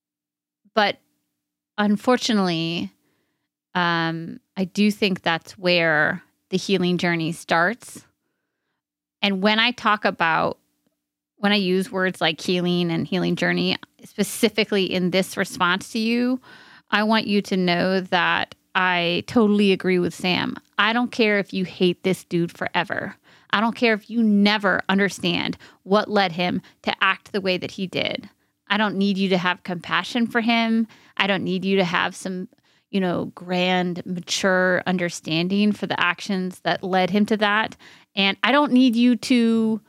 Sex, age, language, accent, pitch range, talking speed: female, 30-49, English, American, 180-220 Hz, 155 wpm